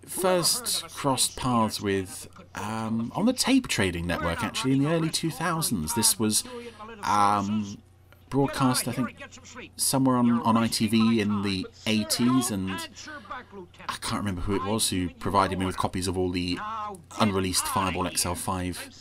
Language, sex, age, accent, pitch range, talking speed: English, male, 30-49, British, 95-125 Hz, 145 wpm